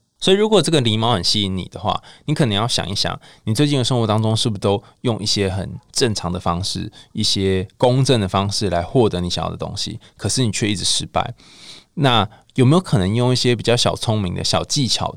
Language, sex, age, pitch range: Chinese, male, 20-39, 95-130 Hz